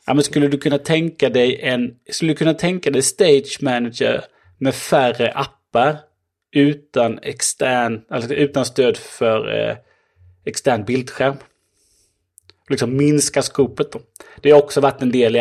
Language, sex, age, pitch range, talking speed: Swedish, male, 30-49, 115-145 Hz, 130 wpm